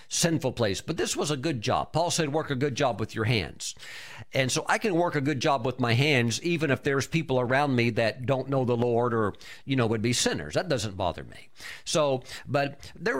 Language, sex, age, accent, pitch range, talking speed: English, male, 50-69, American, 120-160 Hz, 235 wpm